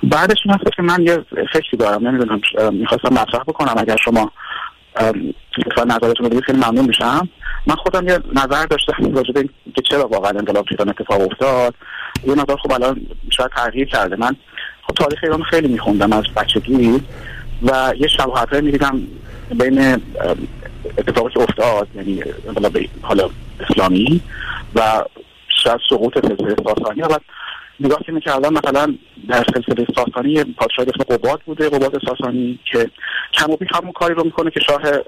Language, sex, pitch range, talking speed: Persian, male, 120-145 Hz, 135 wpm